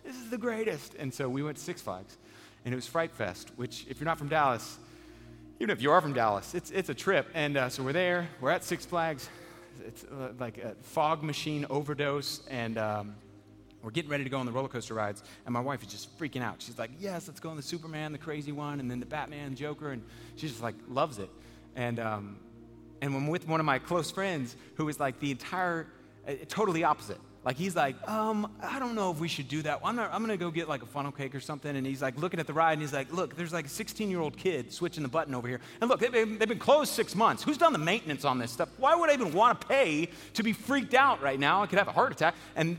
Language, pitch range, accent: English, 135-185 Hz, American